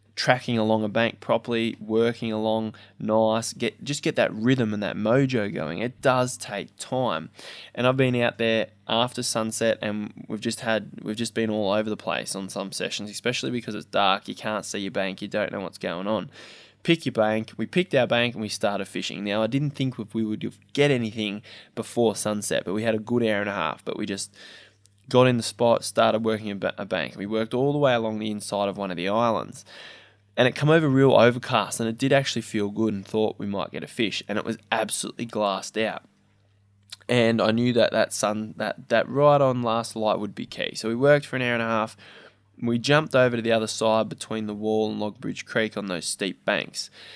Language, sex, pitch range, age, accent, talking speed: English, male, 105-120 Hz, 20-39, Australian, 225 wpm